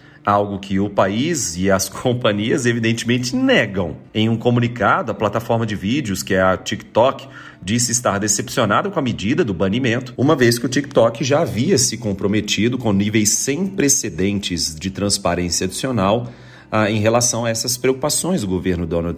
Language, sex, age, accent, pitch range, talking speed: Portuguese, male, 40-59, Brazilian, 100-125 Hz, 165 wpm